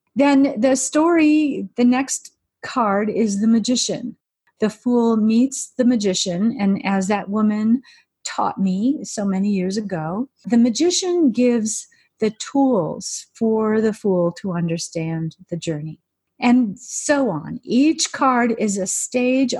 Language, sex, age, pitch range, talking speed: English, female, 40-59, 180-235 Hz, 135 wpm